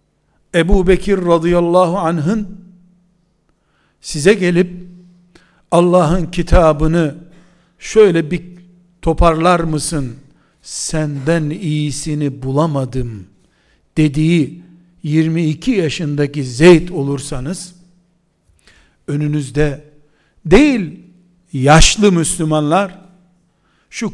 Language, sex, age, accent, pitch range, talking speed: Turkish, male, 60-79, native, 150-180 Hz, 60 wpm